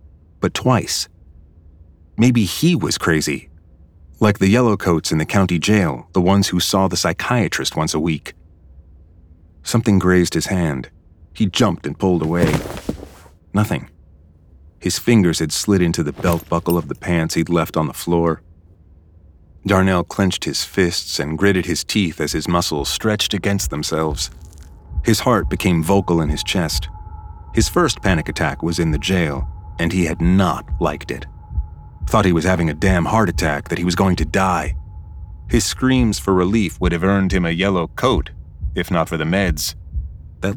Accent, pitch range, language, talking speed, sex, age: American, 80-95 Hz, English, 170 wpm, male, 30-49